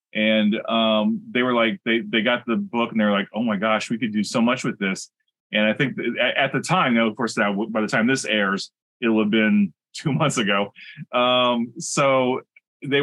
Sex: male